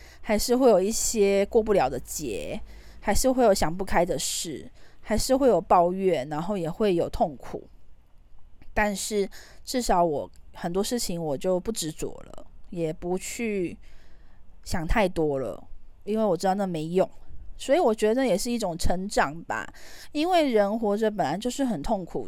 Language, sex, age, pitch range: Chinese, female, 20-39, 170-230 Hz